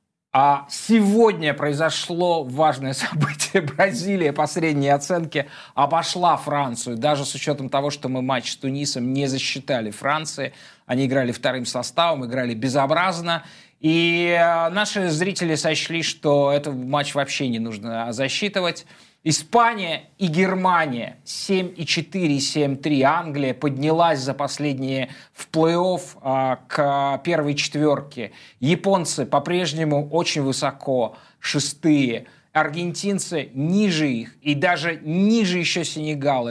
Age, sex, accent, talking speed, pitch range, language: 20-39, male, native, 110 wpm, 135-170 Hz, Russian